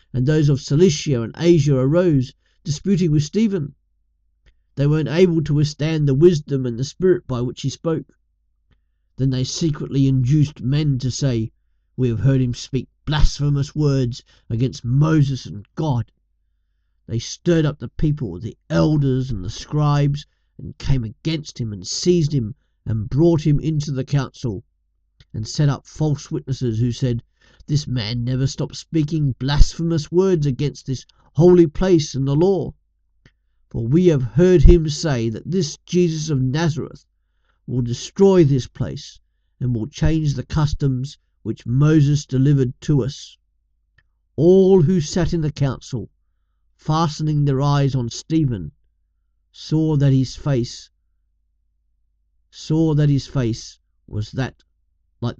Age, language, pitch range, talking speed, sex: 50-69, English, 110-155 Hz, 145 wpm, male